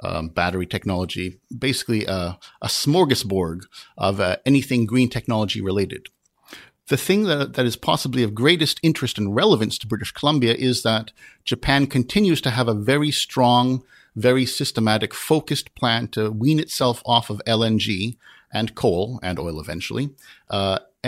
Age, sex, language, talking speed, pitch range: 50-69, male, English, 150 wpm, 105-135 Hz